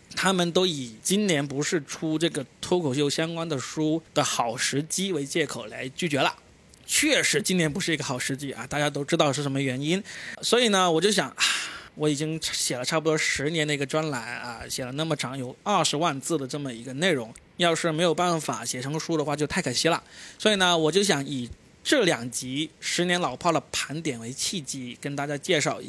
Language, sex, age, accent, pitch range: Chinese, male, 20-39, native, 140-175 Hz